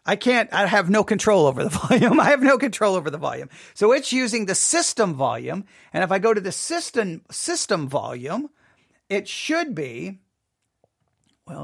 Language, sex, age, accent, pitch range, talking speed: English, male, 40-59, American, 150-225 Hz, 180 wpm